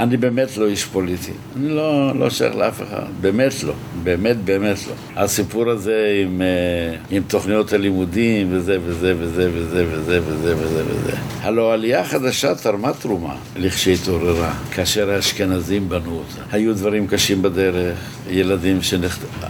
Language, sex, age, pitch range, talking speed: Hebrew, male, 60-79, 100-125 Hz, 140 wpm